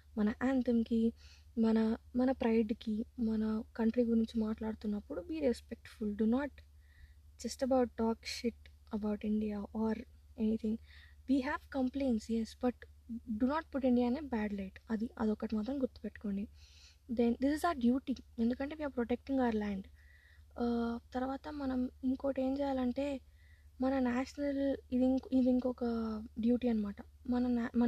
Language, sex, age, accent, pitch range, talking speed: Telugu, female, 20-39, native, 220-255 Hz, 125 wpm